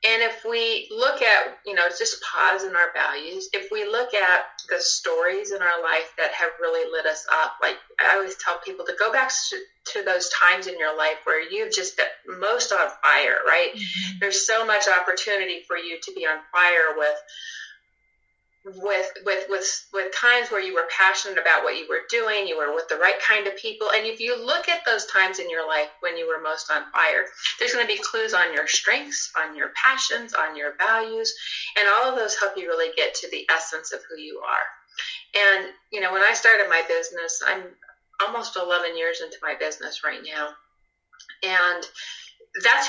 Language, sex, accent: English, female, American